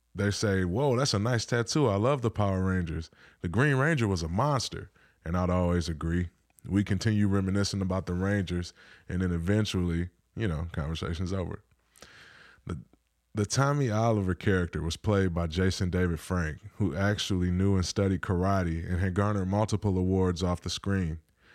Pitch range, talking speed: 85-100 Hz, 165 wpm